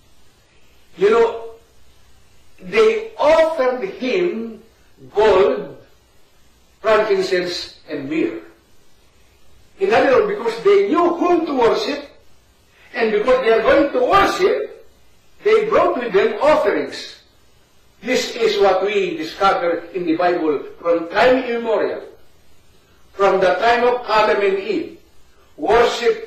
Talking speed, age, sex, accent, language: 110 wpm, 50-69, male, native, Filipino